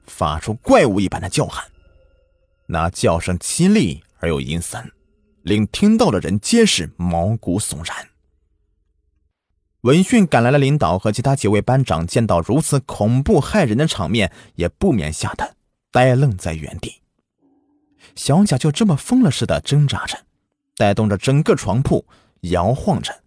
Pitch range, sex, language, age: 95-155 Hz, male, Chinese, 30-49